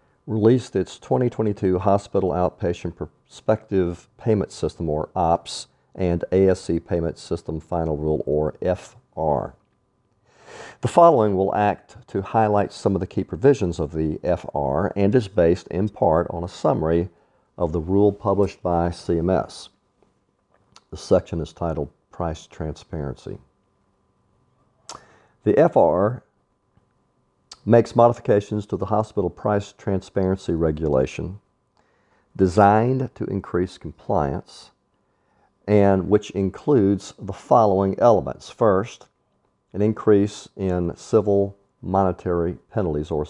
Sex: male